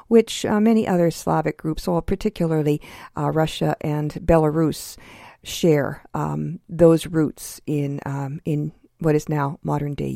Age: 50-69